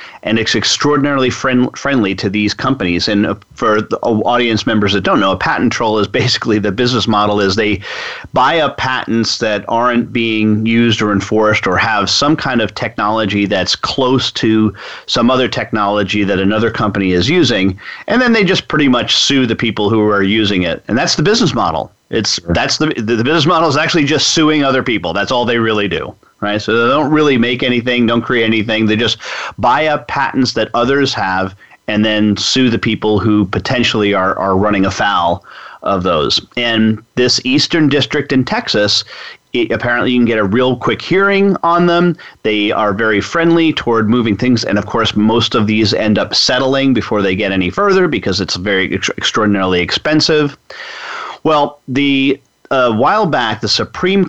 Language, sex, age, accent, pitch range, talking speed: English, male, 40-59, American, 105-135 Hz, 190 wpm